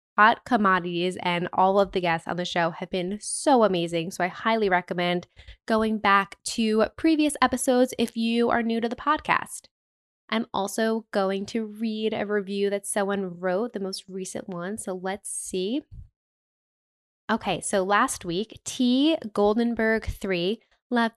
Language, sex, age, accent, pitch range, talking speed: English, female, 10-29, American, 185-230 Hz, 155 wpm